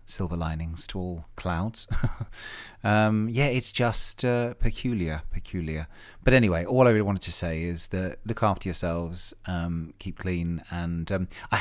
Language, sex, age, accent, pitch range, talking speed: English, male, 30-49, British, 85-105 Hz, 160 wpm